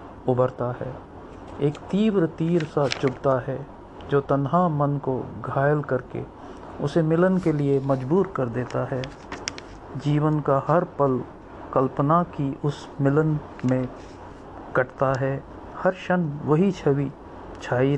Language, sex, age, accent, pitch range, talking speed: Hindi, male, 50-69, native, 130-155 Hz, 125 wpm